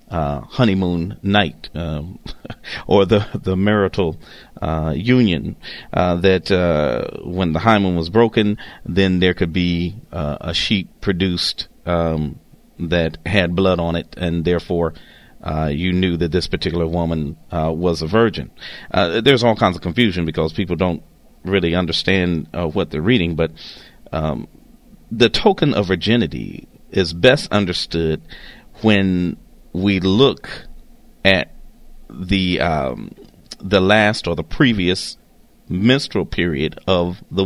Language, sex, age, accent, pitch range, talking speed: English, male, 40-59, American, 85-105 Hz, 135 wpm